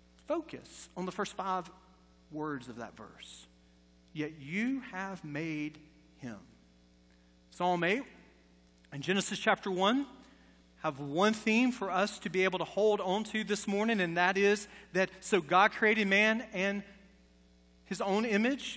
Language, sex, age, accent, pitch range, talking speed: English, male, 40-59, American, 180-245 Hz, 145 wpm